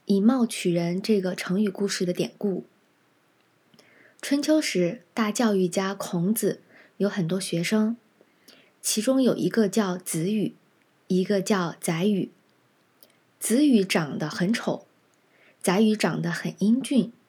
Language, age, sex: Chinese, 20-39, female